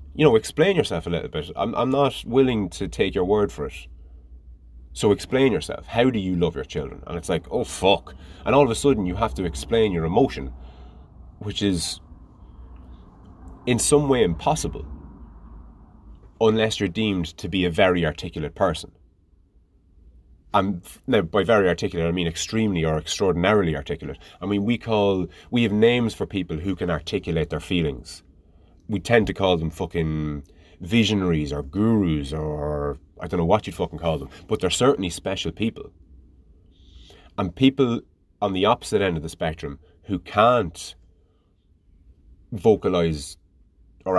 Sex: male